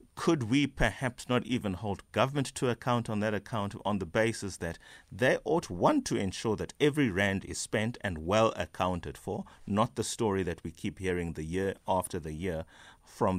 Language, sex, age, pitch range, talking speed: English, male, 30-49, 105-130 Hz, 195 wpm